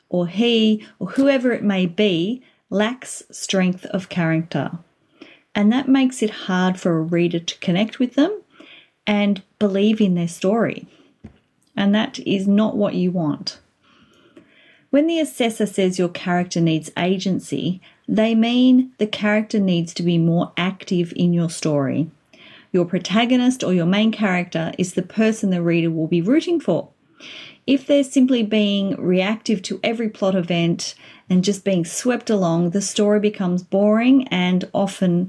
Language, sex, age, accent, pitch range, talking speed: English, female, 30-49, Australian, 175-230 Hz, 155 wpm